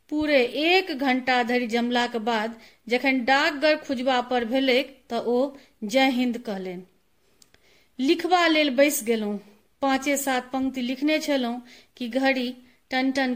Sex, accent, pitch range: female, native, 245-290 Hz